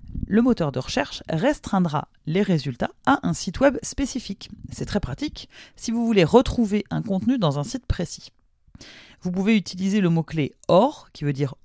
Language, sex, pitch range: French, female, 150-225 Hz